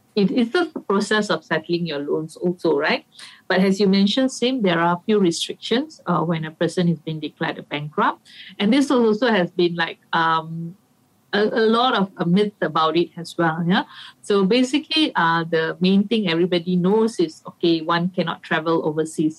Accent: Malaysian